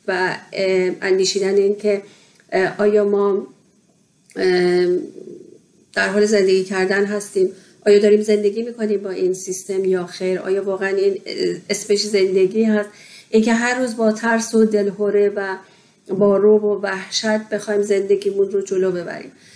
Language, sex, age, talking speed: Persian, female, 40-59, 130 wpm